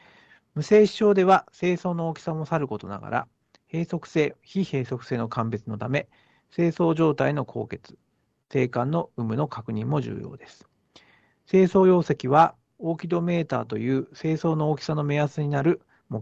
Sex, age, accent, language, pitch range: male, 50-69, native, Japanese, 125-175 Hz